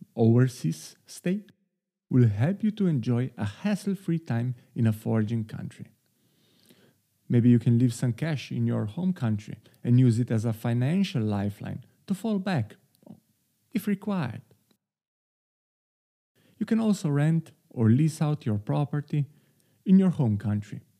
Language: English